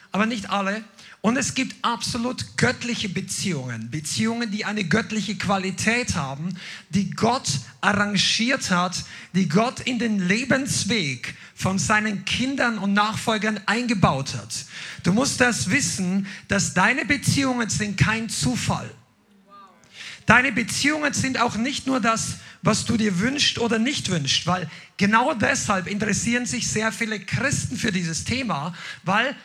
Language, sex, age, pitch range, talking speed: German, male, 50-69, 185-235 Hz, 135 wpm